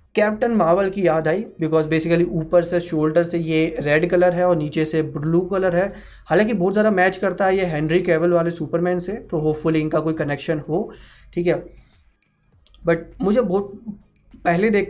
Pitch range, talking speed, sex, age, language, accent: 160-190 Hz, 185 wpm, male, 20-39, Hindi, native